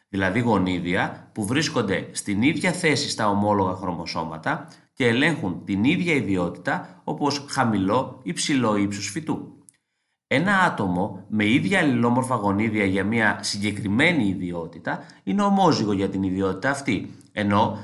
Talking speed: 125 wpm